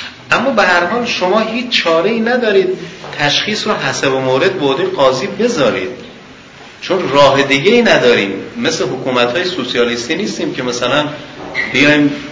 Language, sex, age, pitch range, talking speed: Persian, male, 40-59, 120-175 Hz, 140 wpm